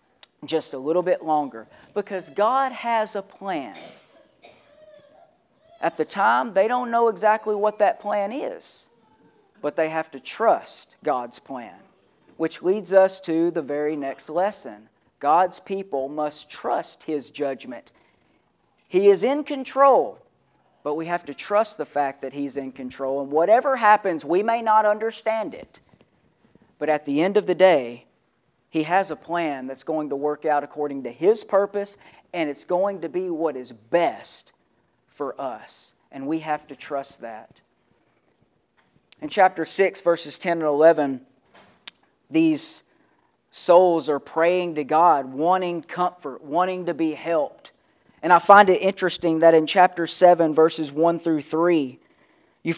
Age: 40-59